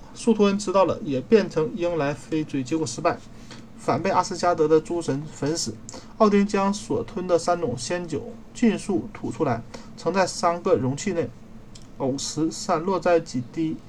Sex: male